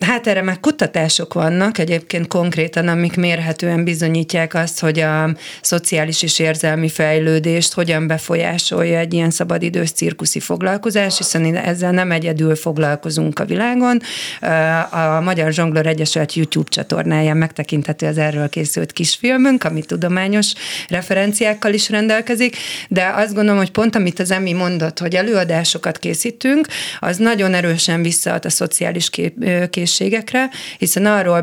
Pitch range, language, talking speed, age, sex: 160-200 Hz, Hungarian, 130 wpm, 40-59, female